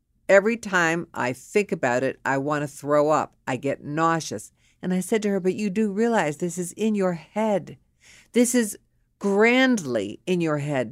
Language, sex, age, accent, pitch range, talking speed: English, female, 50-69, American, 145-220 Hz, 185 wpm